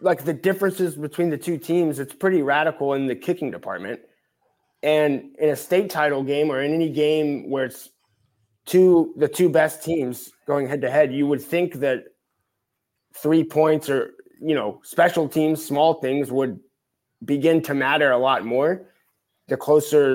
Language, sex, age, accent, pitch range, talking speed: English, male, 20-39, American, 140-170 Hz, 170 wpm